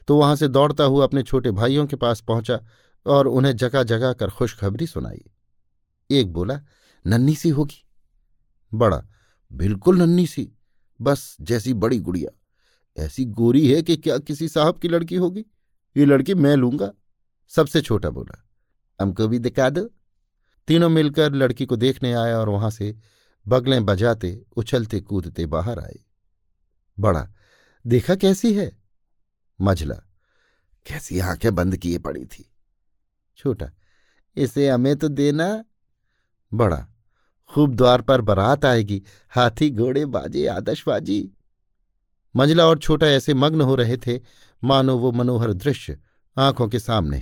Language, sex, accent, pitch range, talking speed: Hindi, male, native, 100-145 Hz, 135 wpm